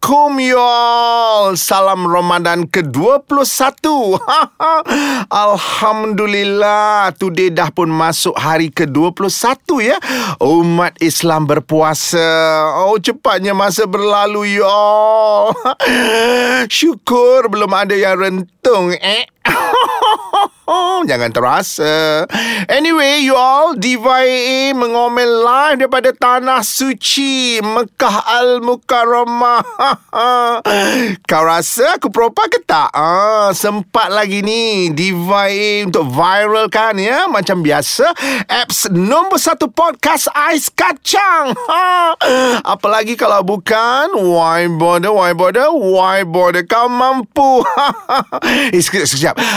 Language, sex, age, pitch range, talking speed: Malay, male, 30-49, 190-265 Hz, 95 wpm